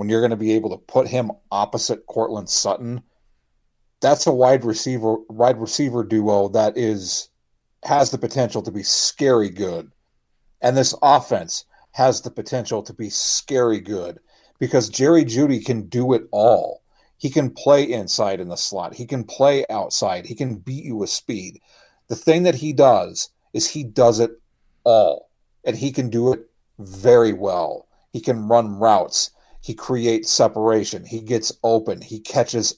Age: 40-59